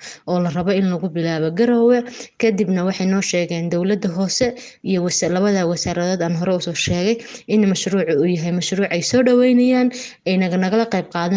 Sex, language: female, English